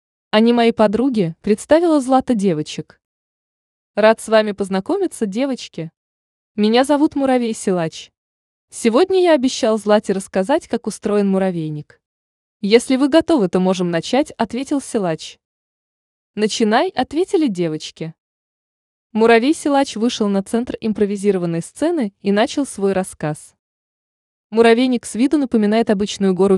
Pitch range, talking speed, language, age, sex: 185-260 Hz, 115 wpm, Russian, 20-39, female